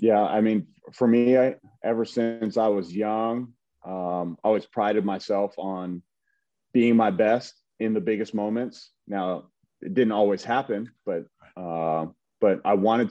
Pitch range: 95-115 Hz